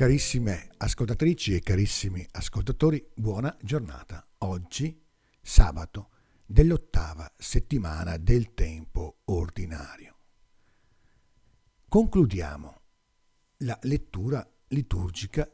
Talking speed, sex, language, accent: 70 wpm, male, Italian, native